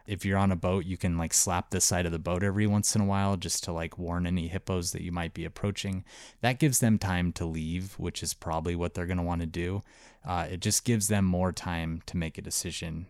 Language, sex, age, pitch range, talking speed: English, male, 20-39, 85-100 Hz, 255 wpm